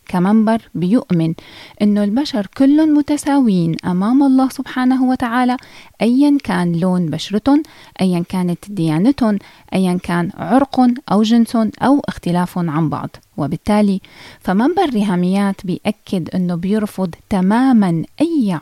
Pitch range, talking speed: 175-245 Hz, 115 wpm